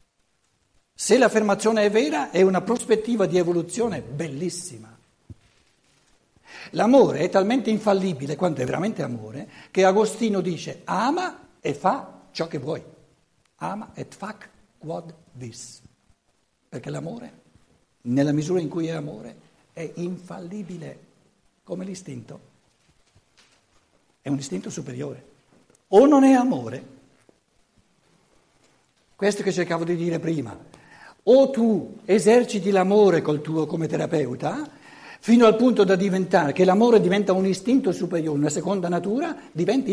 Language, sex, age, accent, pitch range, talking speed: Italian, male, 60-79, native, 155-215 Hz, 120 wpm